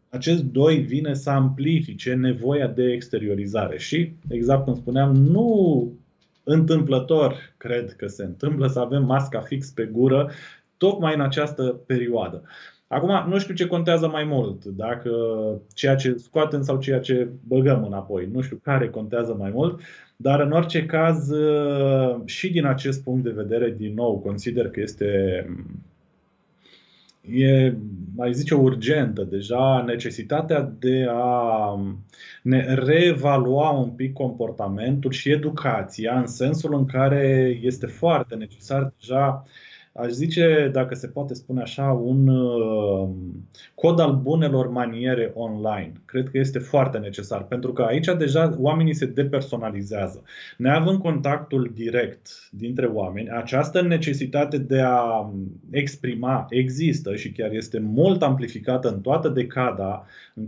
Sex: male